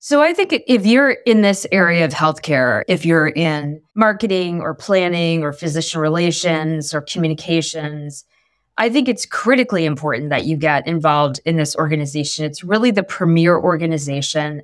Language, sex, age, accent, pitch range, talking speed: English, female, 20-39, American, 160-195 Hz, 155 wpm